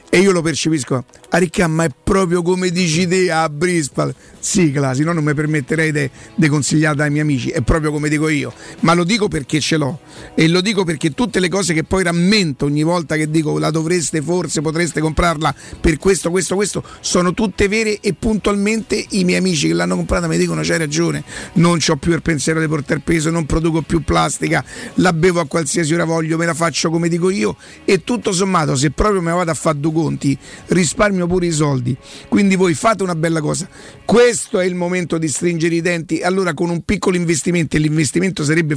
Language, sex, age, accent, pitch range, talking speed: Italian, male, 50-69, native, 155-185 Hz, 205 wpm